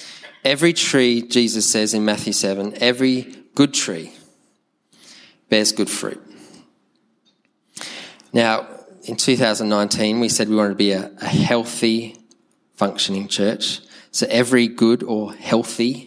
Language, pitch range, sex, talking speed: English, 105-125 Hz, male, 115 wpm